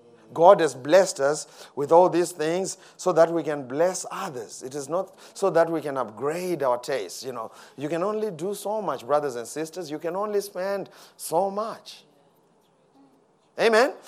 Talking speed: 180 wpm